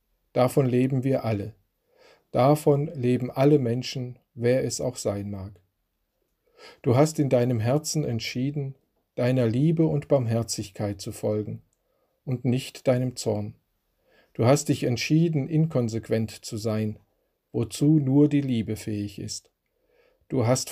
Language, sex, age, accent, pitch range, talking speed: German, male, 50-69, German, 110-130 Hz, 125 wpm